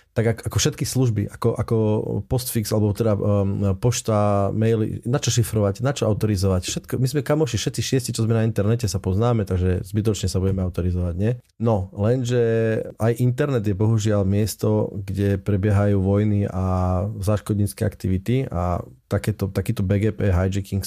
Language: Slovak